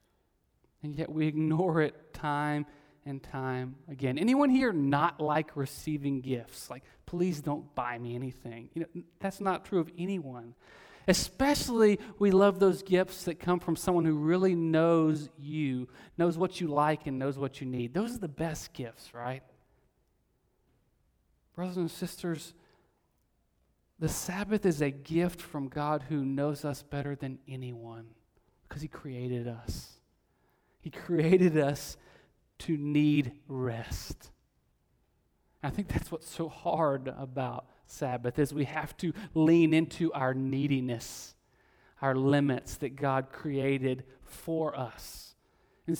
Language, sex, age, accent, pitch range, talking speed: English, male, 40-59, American, 130-175 Hz, 135 wpm